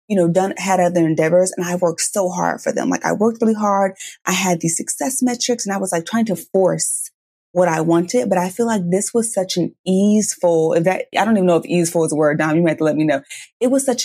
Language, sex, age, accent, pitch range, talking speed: English, female, 20-39, American, 175-225 Hz, 270 wpm